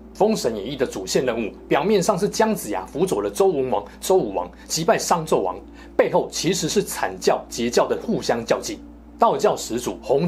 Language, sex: Chinese, male